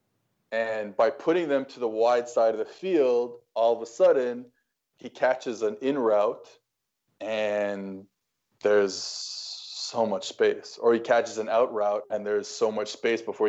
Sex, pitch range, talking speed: male, 110-145 Hz, 165 wpm